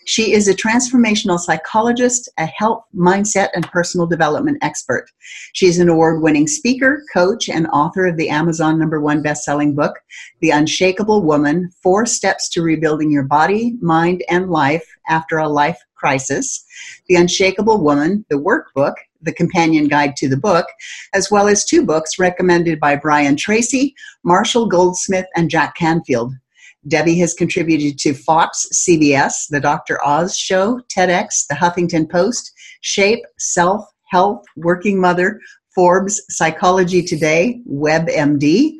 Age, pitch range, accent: 50-69, 155-200 Hz, American